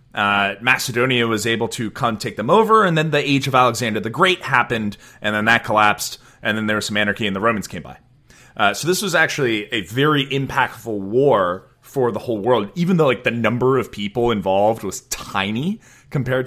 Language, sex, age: English, male, 30-49